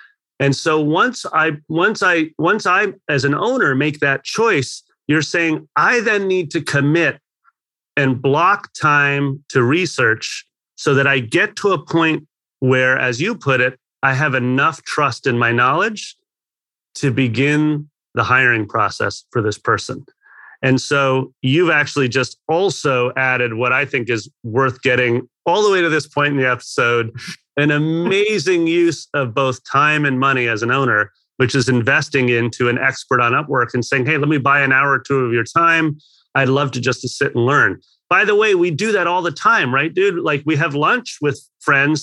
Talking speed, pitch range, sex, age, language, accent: 190 wpm, 130-160 Hz, male, 30-49, English, American